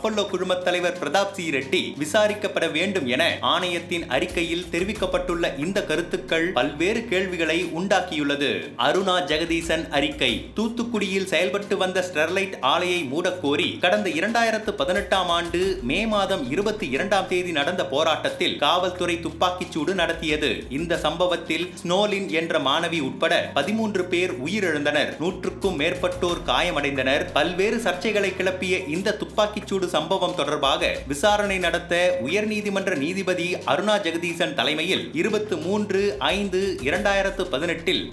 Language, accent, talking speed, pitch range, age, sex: Tamil, native, 90 wpm, 170-200 Hz, 30-49, male